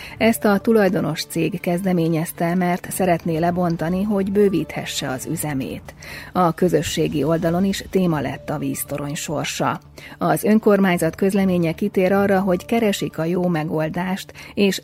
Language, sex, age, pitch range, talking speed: Hungarian, female, 30-49, 160-190 Hz, 130 wpm